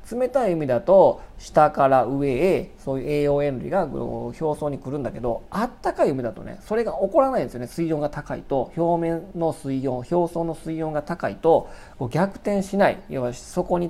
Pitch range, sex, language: 140-195 Hz, male, Japanese